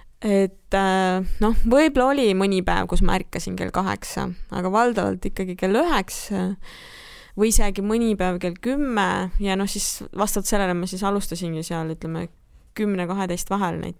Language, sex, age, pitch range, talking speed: English, female, 20-39, 180-225 Hz, 155 wpm